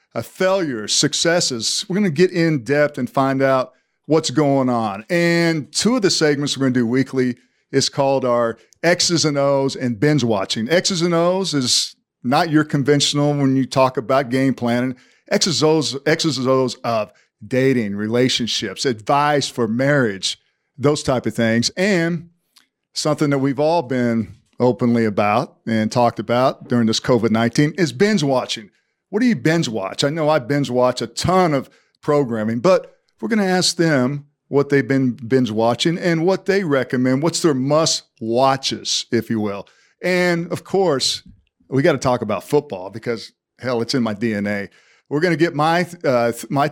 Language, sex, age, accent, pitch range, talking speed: English, male, 50-69, American, 120-165 Hz, 175 wpm